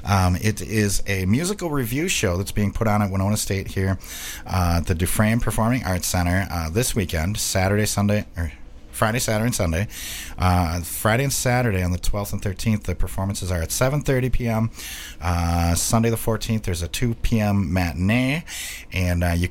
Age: 30-49